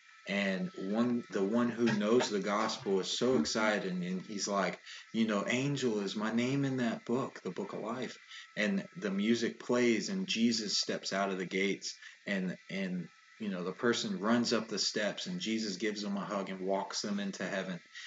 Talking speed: 195 wpm